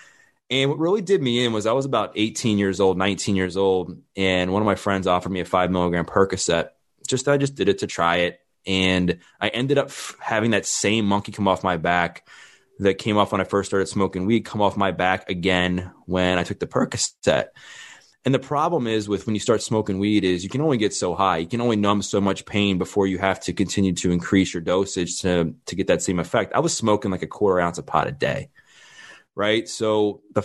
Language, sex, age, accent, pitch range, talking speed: English, male, 20-39, American, 90-105 Hz, 235 wpm